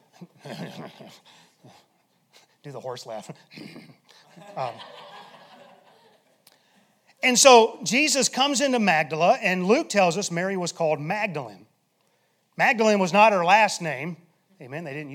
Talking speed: 110 wpm